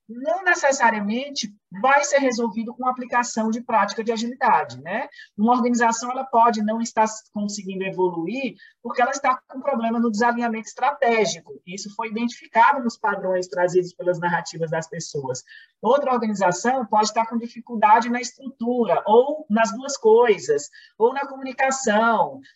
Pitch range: 210-265 Hz